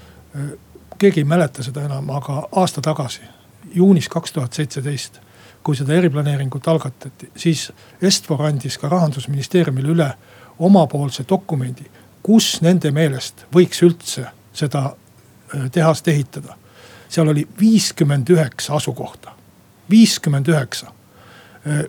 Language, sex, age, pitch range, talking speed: Finnish, male, 60-79, 135-165 Hz, 95 wpm